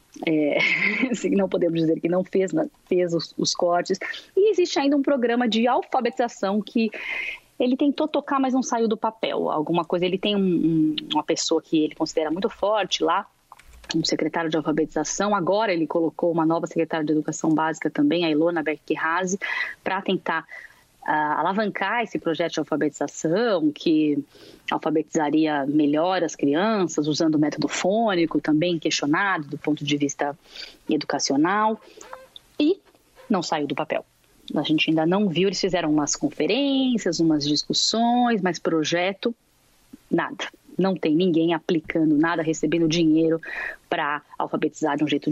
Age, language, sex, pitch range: 20-39, Portuguese, female, 155-220 Hz